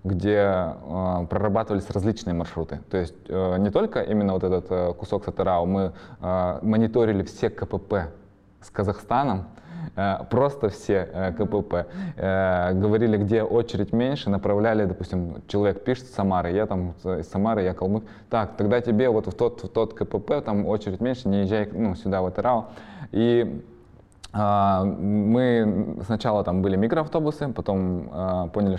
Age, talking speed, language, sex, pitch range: 20-39, 150 wpm, Russian, male, 90-105 Hz